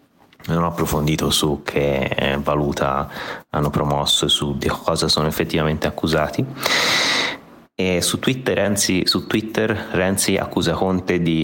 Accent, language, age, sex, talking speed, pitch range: native, Italian, 30-49, male, 125 wpm, 75-85 Hz